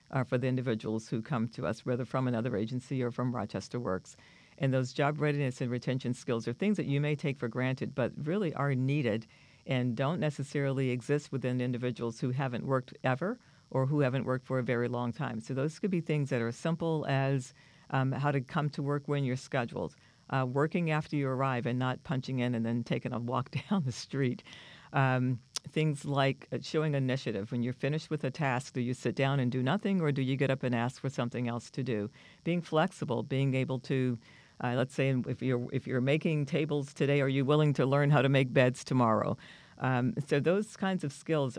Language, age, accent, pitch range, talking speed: English, 50-69, American, 125-145 Hz, 215 wpm